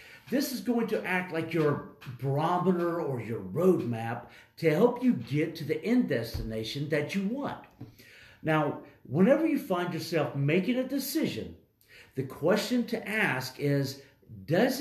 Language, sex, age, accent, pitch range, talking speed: English, male, 50-69, American, 140-185 Hz, 145 wpm